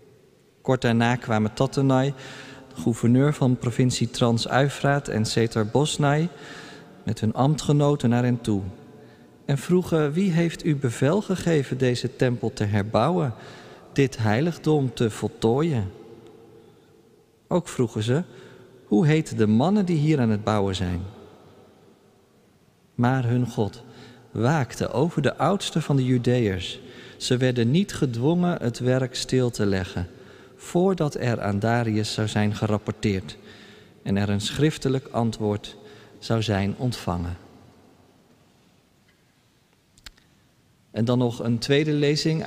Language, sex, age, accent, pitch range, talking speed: Dutch, male, 40-59, Dutch, 110-140 Hz, 120 wpm